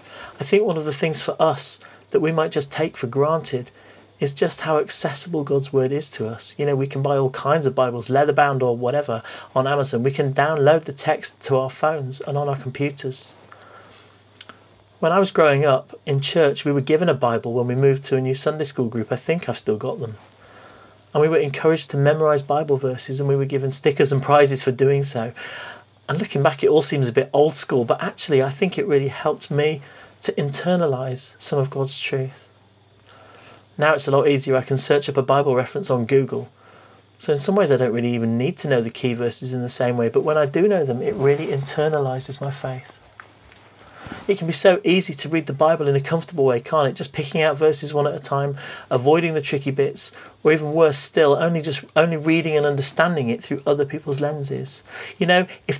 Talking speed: 225 wpm